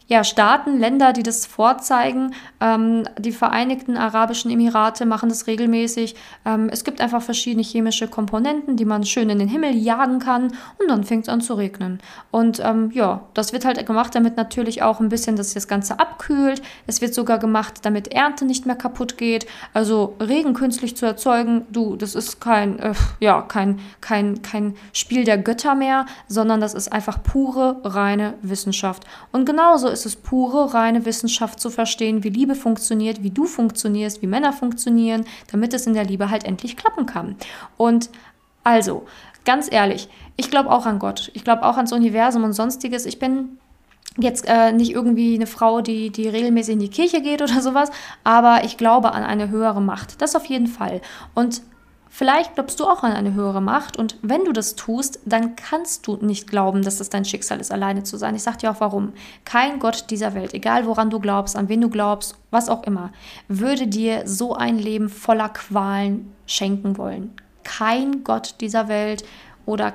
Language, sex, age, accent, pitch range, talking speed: German, female, 20-39, German, 215-245 Hz, 185 wpm